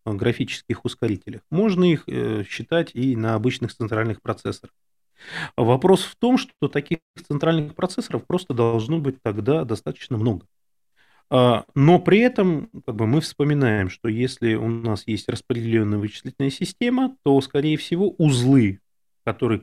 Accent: native